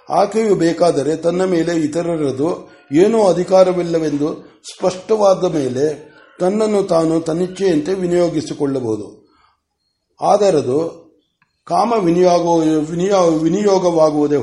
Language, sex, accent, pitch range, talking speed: Kannada, male, native, 150-185 Hz, 60 wpm